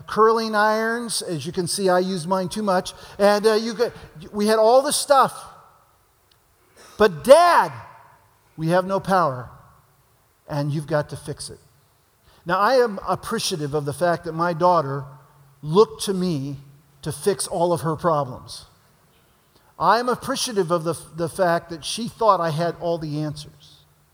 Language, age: English, 50-69